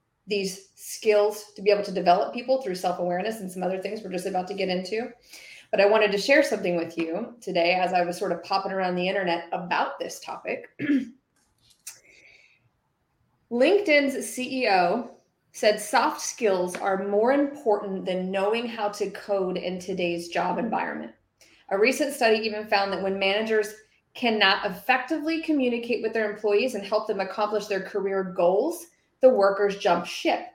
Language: English